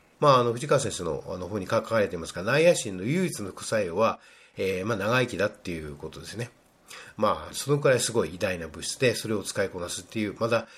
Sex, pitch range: male, 110-175 Hz